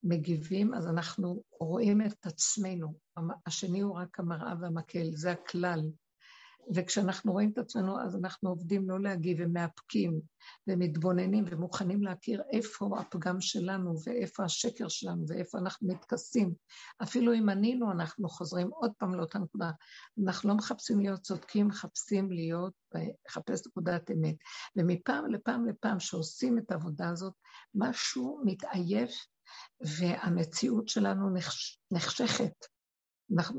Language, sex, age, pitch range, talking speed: Hebrew, female, 60-79, 170-210 Hz, 105 wpm